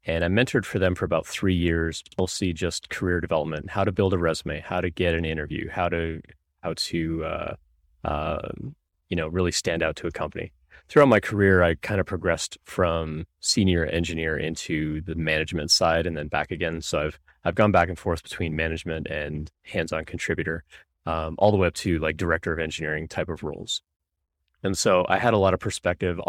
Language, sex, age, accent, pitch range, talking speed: English, male, 30-49, American, 80-90 Hz, 200 wpm